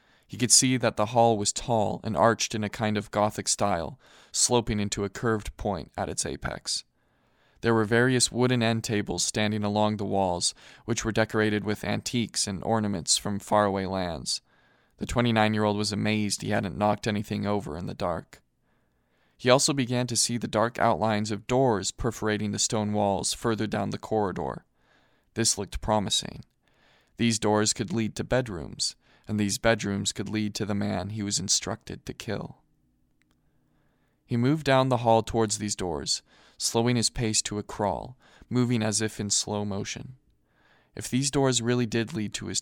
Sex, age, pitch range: male, 20-39, 100-115 Hz